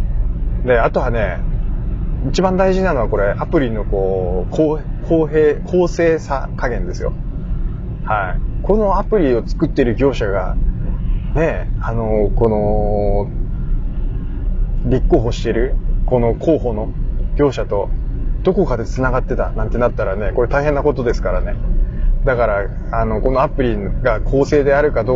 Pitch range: 105-145 Hz